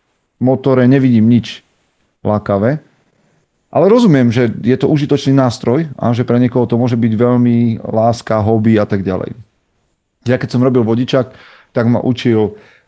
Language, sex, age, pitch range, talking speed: Slovak, male, 40-59, 105-125 Hz, 140 wpm